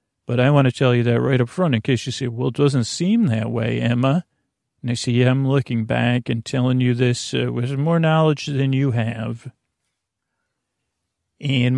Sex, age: male, 40-59